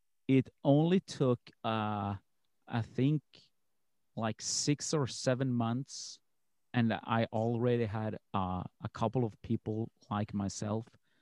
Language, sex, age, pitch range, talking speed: English, male, 40-59, 110-145 Hz, 120 wpm